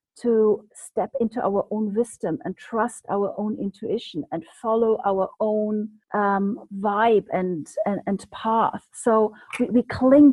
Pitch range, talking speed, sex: 225-270 Hz, 145 wpm, female